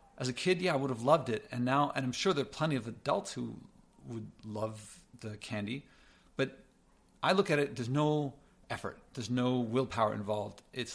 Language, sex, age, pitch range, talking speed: English, male, 50-69, 125-155 Hz, 205 wpm